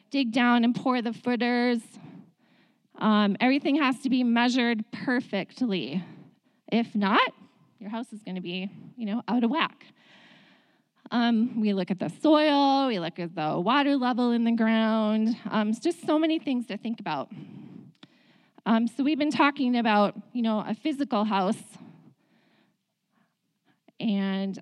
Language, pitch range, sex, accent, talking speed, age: English, 205-245 Hz, female, American, 145 wpm, 20-39